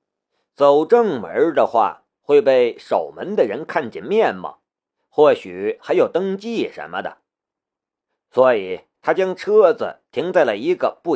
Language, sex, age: Chinese, male, 50-69